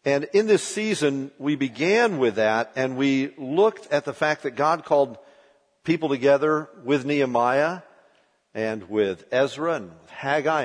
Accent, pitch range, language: American, 120-150 Hz, English